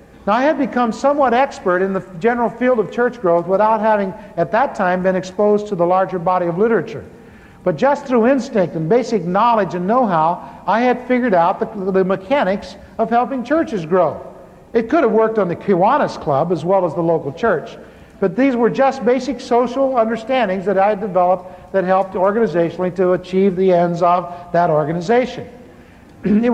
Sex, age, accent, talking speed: male, 60-79, American, 185 wpm